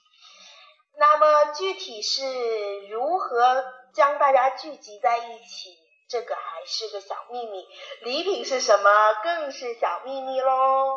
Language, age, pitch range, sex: Chinese, 30-49, 210-300 Hz, female